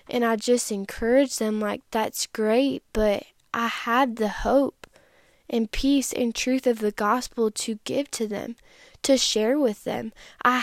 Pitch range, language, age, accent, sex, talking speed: 215-245 Hz, English, 10-29, American, female, 165 wpm